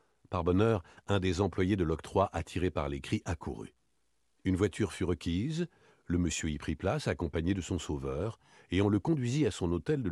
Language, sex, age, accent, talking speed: French, male, 60-79, French, 195 wpm